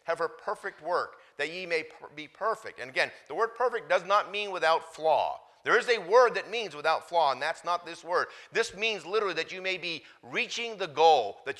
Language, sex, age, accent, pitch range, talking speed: English, male, 40-59, American, 130-195 Hz, 220 wpm